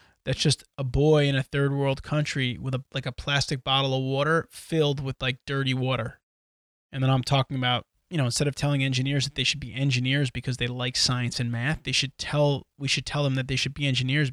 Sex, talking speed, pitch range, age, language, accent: male, 235 wpm, 125-145 Hz, 20-39, English, American